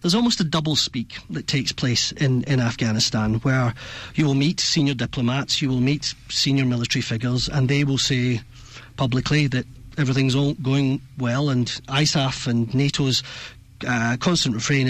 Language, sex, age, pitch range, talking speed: English, male, 40-59, 125-150 Hz, 160 wpm